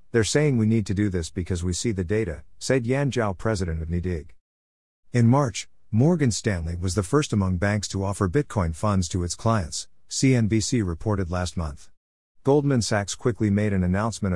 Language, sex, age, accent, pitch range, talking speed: English, male, 50-69, American, 85-110 Hz, 185 wpm